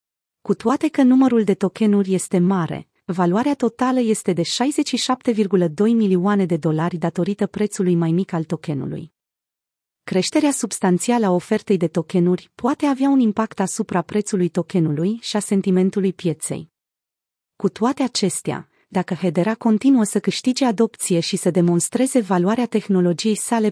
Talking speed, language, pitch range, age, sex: 135 wpm, Romanian, 180-230 Hz, 30-49, female